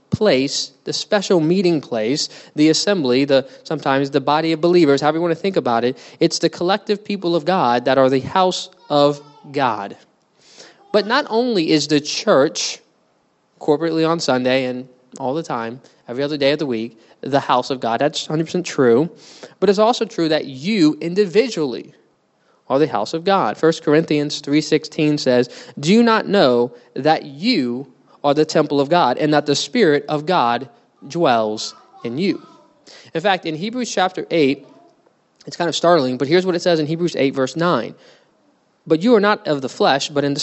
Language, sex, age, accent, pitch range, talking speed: English, male, 20-39, American, 140-185 Hz, 185 wpm